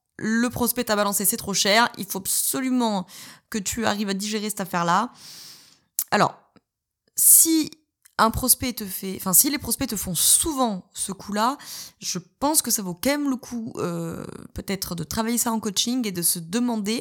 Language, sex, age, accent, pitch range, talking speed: French, female, 20-39, French, 185-230 Hz, 185 wpm